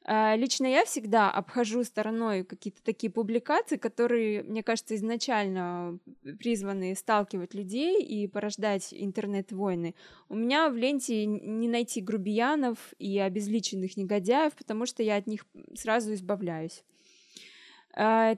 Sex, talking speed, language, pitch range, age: female, 115 wpm, Russian, 205-240 Hz, 20-39